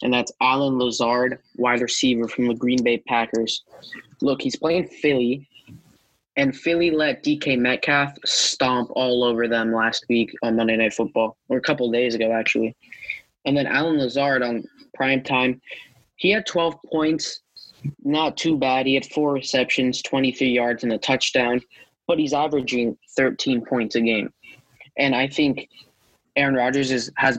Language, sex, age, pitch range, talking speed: English, male, 20-39, 115-140 Hz, 155 wpm